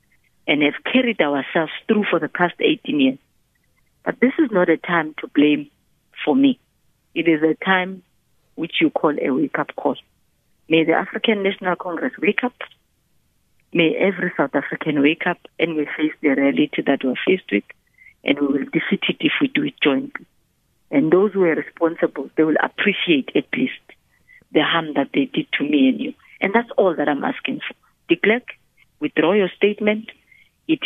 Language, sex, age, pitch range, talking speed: English, female, 50-69, 155-225 Hz, 180 wpm